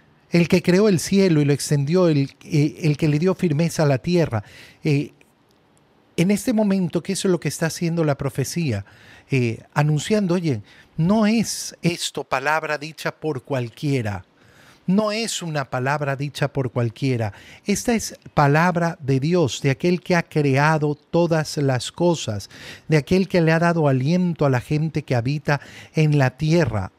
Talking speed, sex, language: 165 wpm, male, Spanish